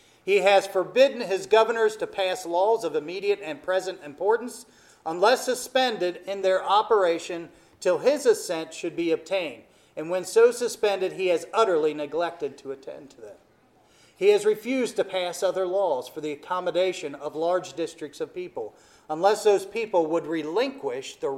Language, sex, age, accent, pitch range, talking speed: English, male, 40-59, American, 160-255 Hz, 160 wpm